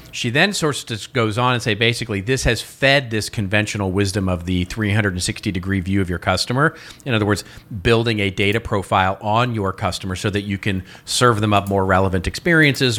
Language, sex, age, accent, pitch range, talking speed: English, male, 40-59, American, 100-120 Hz, 195 wpm